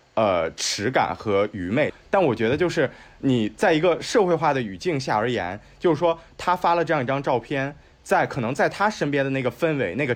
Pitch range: 120-155 Hz